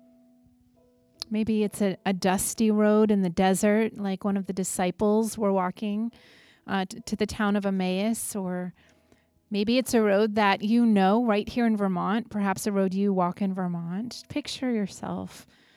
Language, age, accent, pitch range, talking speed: English, 30-49, American, 180-215 Hz, 165 wpm